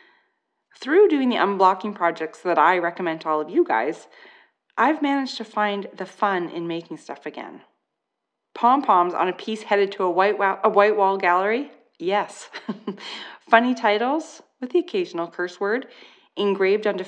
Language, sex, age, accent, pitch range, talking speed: English, female, 30-49, American, 180-240 Hz, 155 wpm